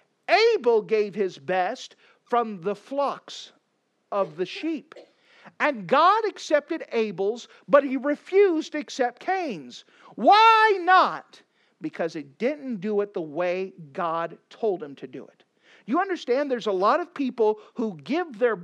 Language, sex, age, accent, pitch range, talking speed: English, male, 50-69, American, 185-260 Hz, 145 wpm